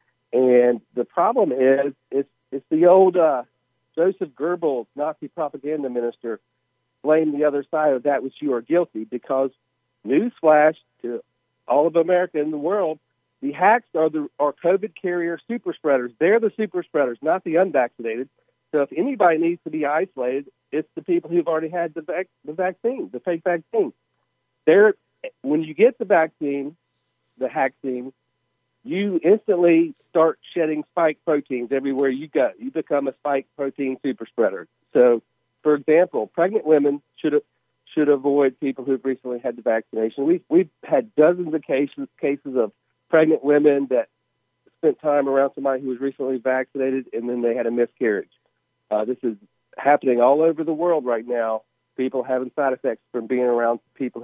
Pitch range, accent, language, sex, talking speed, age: 125-165 Hz, American, English, male, 165 wpm, 50-69